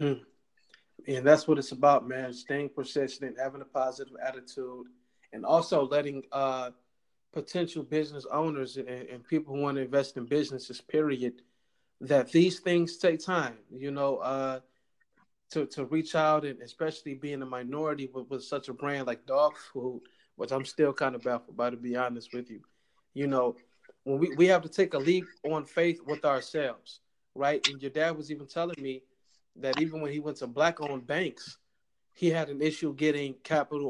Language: English